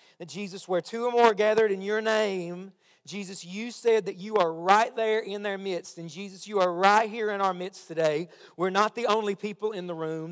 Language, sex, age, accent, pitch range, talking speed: English, male, 40-59, American, 175-215 Hz, 225 wpm